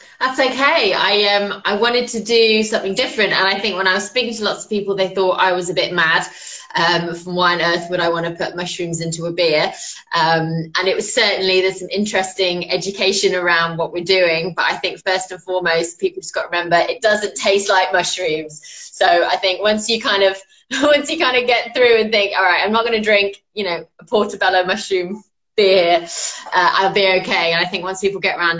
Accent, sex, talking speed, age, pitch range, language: British, female, 225 wpm, 20-39, 170-205 Hz, English